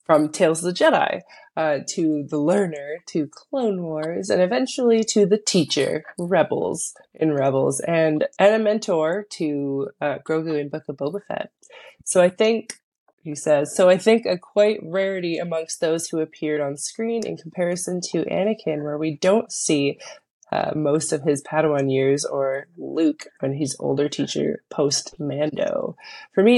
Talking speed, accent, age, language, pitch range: 165 wpm, American, 20-39, English, 150-200 Hz